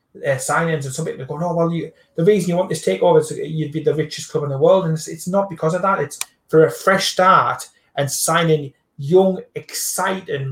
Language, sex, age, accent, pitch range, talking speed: English, male, 30-49, British, 135-170 Hz, 230 wpm